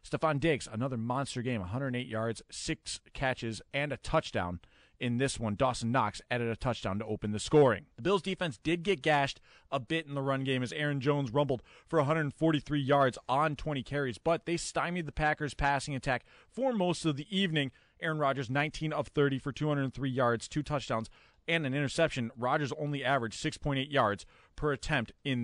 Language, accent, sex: English, American, male